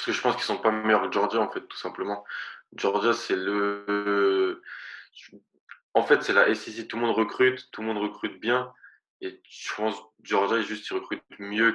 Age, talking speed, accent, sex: 20-39, 200 wpm, French, male